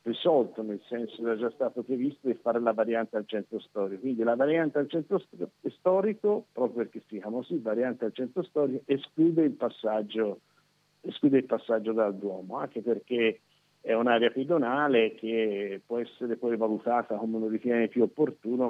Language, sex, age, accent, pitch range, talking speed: Italian, male, 50-69, native, 110-130 Hz, 170 wpm